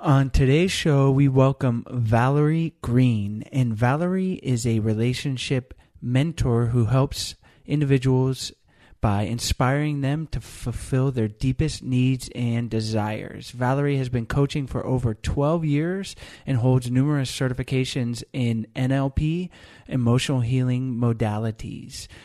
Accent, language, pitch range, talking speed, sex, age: American, English, 115-140 Hz, 115 wpm, male, 30-49